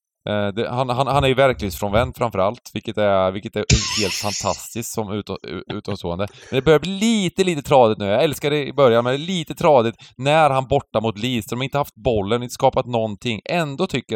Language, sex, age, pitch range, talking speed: Swedish, male, 20-39, 105-140 Hz, 210 wpm